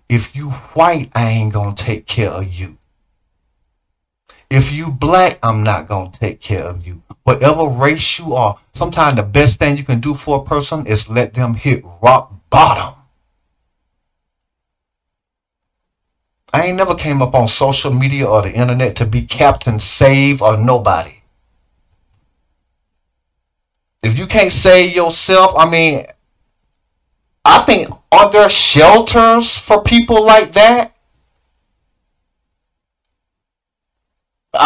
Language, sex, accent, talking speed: English, male, American, 130 wpm